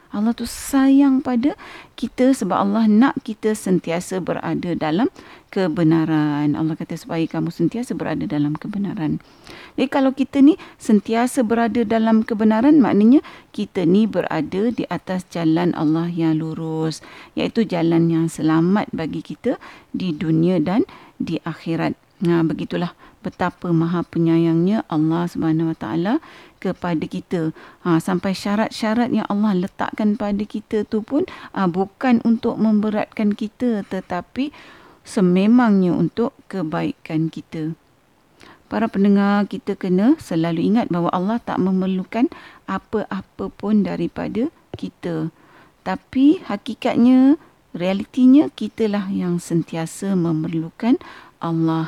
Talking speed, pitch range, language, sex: 115 wpm, 170-240 Hz, Malay, female